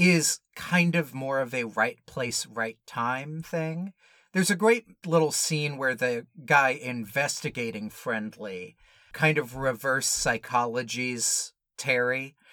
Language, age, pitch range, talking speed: English, 30-49, 125-180 Hz, 125 wpm